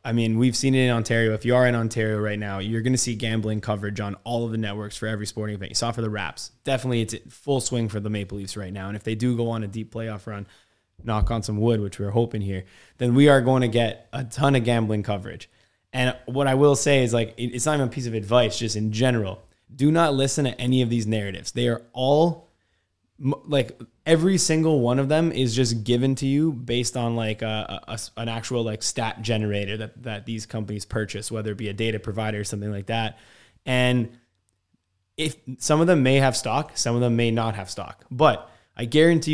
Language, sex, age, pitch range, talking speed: English, male, 20-39, 110-130 Hz, 240 wpm